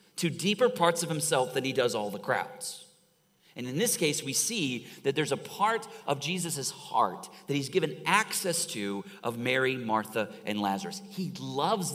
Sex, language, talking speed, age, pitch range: male, English, 180 wpm, 30-49, 115-170 Hz